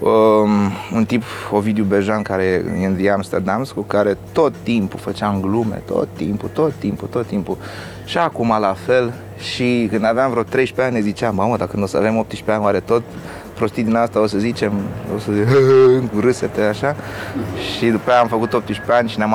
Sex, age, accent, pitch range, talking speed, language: male, 30-49, native, 100-120 Hz, 185 wpm, Romanian